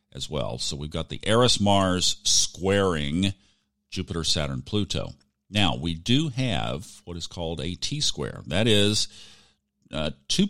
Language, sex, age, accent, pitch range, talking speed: English, male, 50-69, American, 80-105 Hz, 150 wpm